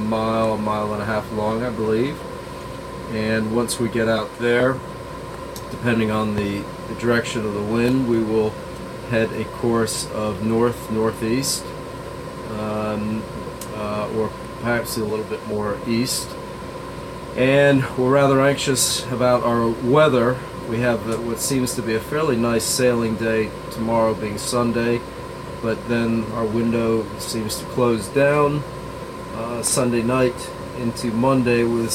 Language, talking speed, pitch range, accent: English, 140 wpm, 110-125 Hz, American